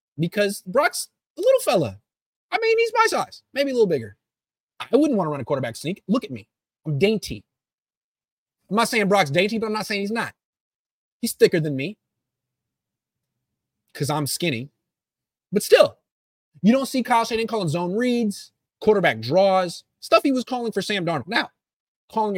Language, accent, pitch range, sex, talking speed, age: English, American, 150-230 Hz, male, 175 wpm, 30-49